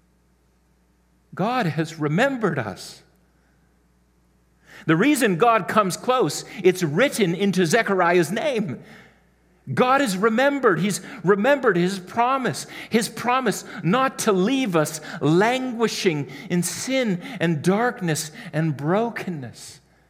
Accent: American